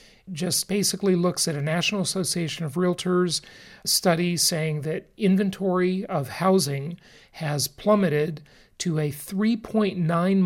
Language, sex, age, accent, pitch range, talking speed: English, male, 40-59, American, 150-195 Hz, 115 wpm